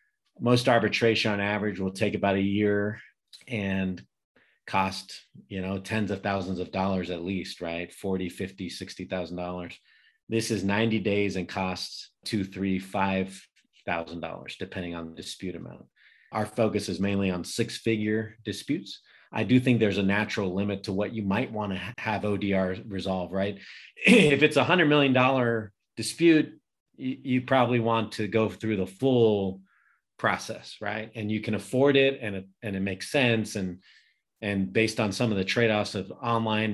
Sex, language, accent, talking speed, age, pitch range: male, English, American, 175 wpm, 30-49, 95-115 Hz